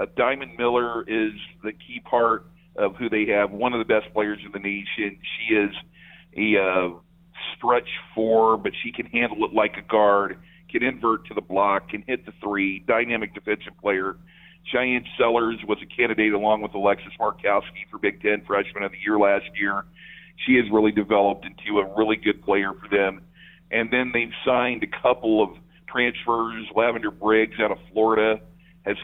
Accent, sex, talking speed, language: American, male, 180 wpm, English